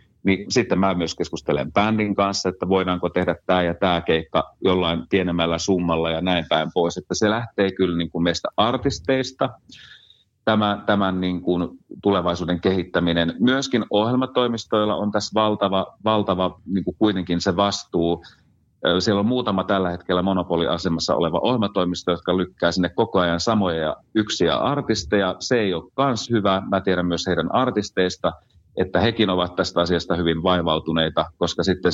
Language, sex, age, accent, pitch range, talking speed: Finnish, male, 30-49, native, 85-105 Hz, 150 wpm